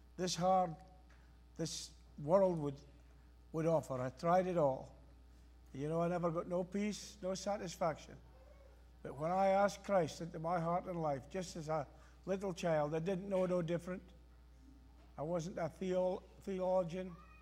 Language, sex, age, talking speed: English, male, 60-79, 155 wpm